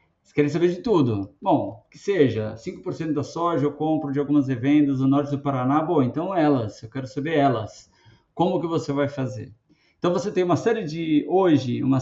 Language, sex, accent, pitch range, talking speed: Portuguese, male, Brazilian, 130-170 Hz, 200 wpm